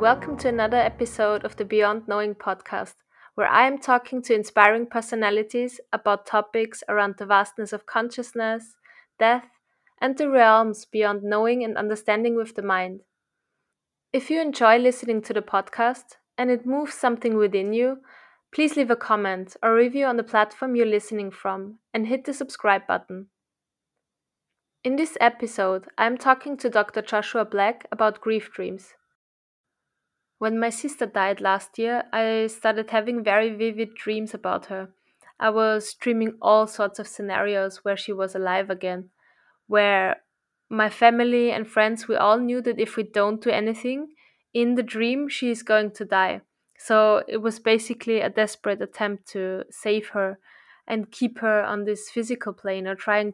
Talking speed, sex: 160 wpm, female